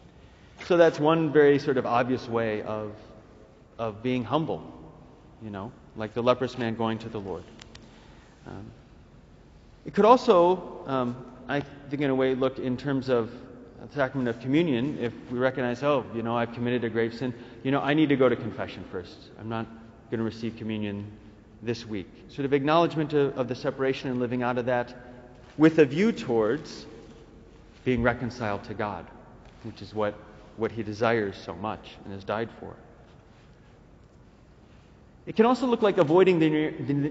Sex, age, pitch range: male, 30-49, 115-140 Hz